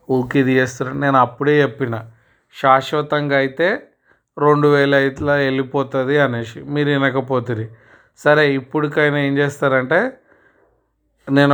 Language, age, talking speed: Telugu, 30-49, 100 wpm